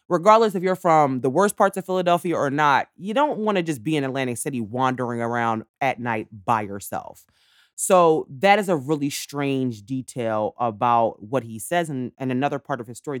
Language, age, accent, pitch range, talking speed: English, 30-49, American, 120-180 Hz, 200 wpm